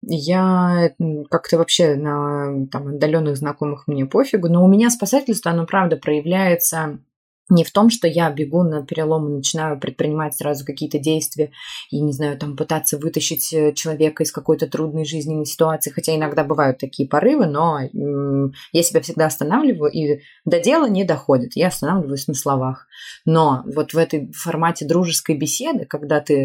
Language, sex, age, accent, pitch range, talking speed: Russian, female, 20-39, native, 145-190 Hz, 155 wpm